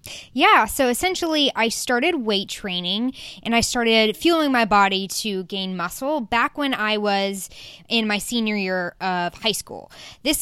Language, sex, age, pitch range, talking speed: English, female, 10-29, 195-245 Hz, 160 wpm